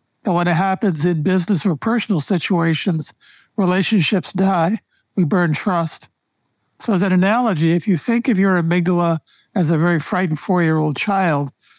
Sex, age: male, 60-79